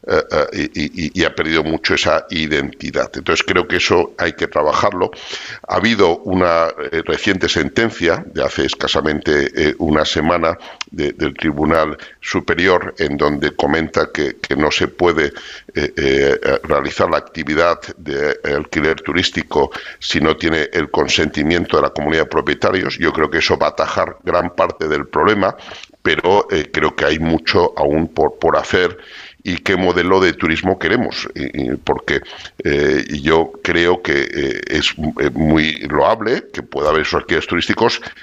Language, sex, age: Spanish, male, 60-79